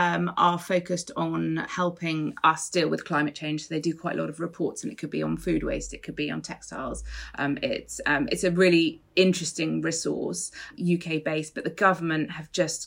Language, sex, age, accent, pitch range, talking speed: English, female, 30-49, British, 155-185 Hz, 205 wpm